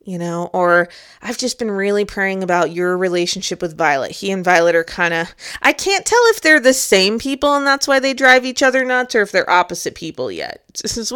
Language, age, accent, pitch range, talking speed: English, 20-39, American, 180-245 Hz, 230 wpm